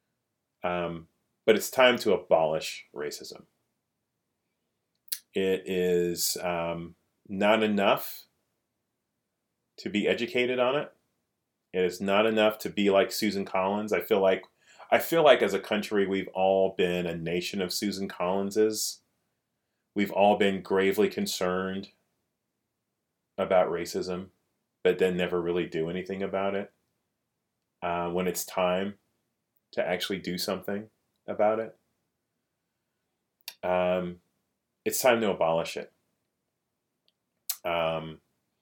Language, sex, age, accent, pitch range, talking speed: English, male, 30-49, American, 85-100 Hz, 115 wpm